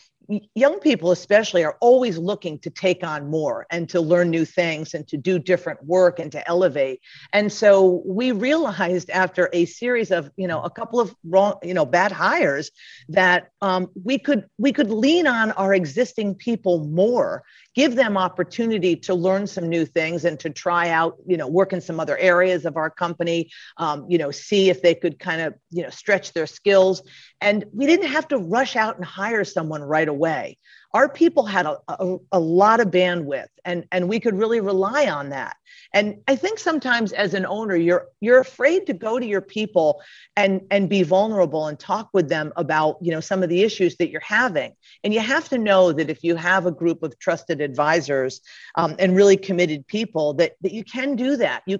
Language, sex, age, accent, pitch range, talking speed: English, female, 50-69, American, 170-220 Hz, 205 wpm